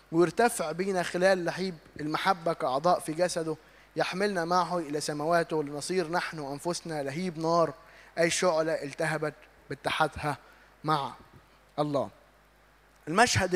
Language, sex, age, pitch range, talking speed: Arabic, male, 20-39, 165-200 Hz, 105 wpm